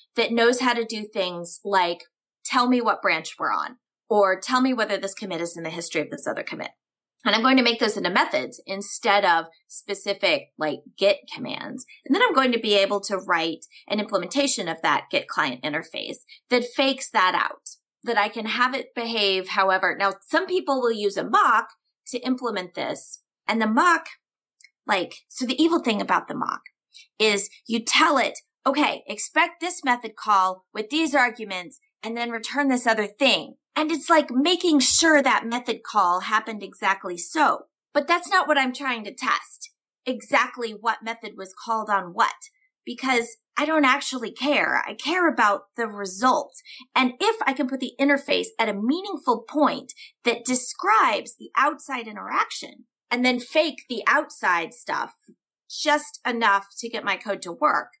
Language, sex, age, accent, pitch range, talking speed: English, female, 30-49, American, 205-290 Hz, 180 wpm